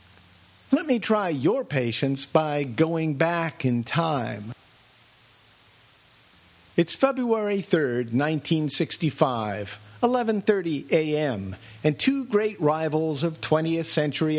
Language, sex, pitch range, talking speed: English, male, 130-185 Hz, 100 wpm